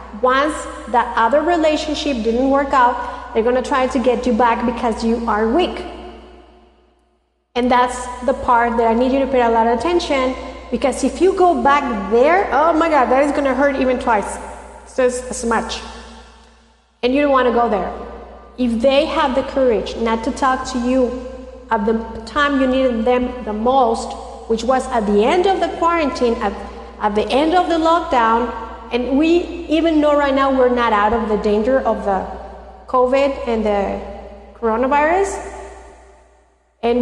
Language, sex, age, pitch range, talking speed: English, female, 40-59, 235-280 Hz, 180 wpm